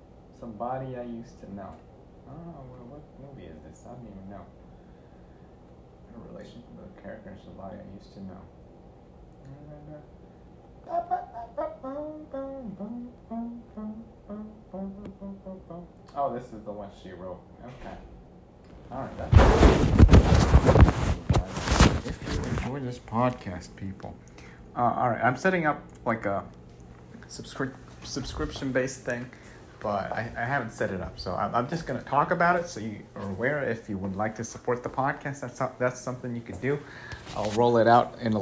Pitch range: 105-145 Hz